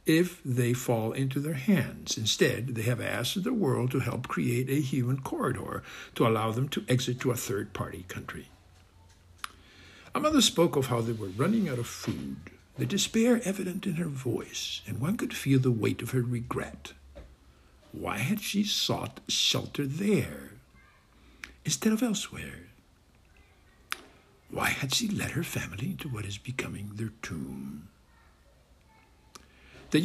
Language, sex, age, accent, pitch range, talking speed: English, male, 60-79, American, 95-135 Hz, 150 wpm